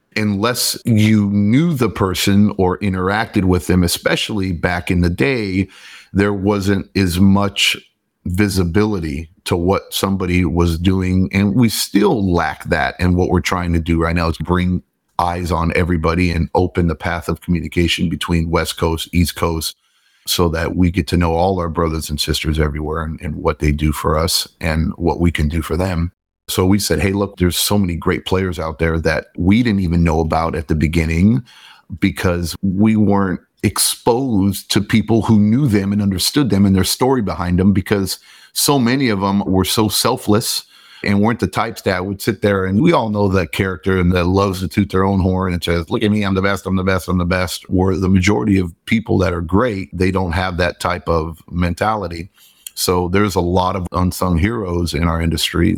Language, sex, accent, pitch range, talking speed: English, male, American, 85-100 Hz, 200 wpm